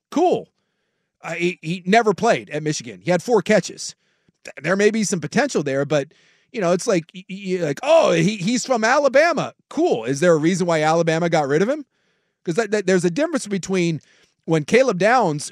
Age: 30-49